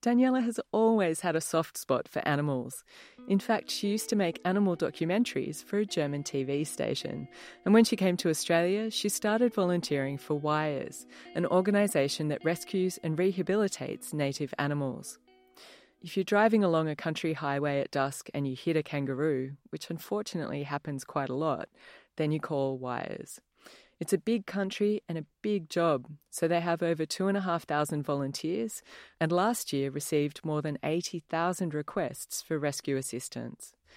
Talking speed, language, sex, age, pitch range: 160 wpm, English, female, 30-49, 145-195 Hz